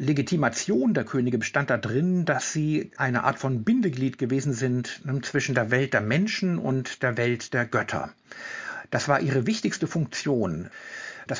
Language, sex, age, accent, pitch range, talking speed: German, male, 60-79, German, 125-155 Hz, 155 wpm